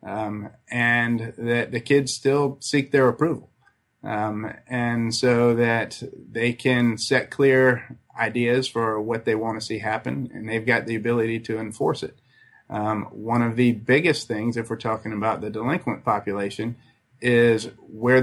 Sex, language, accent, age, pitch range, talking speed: male, English, American, 30-49, 115-125 Hz, 160 wpm